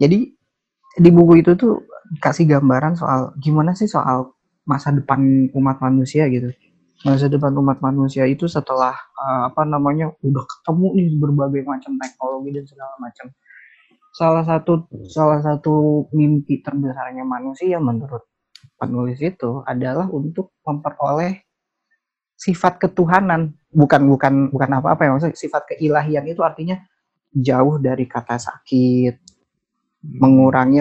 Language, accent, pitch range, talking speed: Indonesian, native, 130-165 Hz, 125 wpm